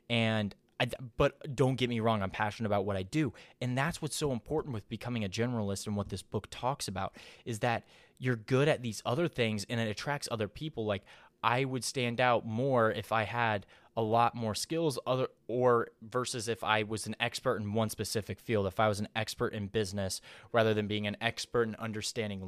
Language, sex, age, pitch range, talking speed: English, male, 20-39, 105-120 Hz, 210 wpm